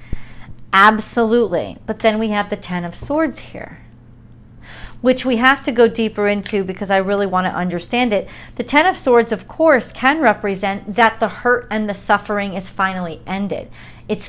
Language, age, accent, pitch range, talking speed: English, 40-59, American, 190-230 Hz, 175 wpm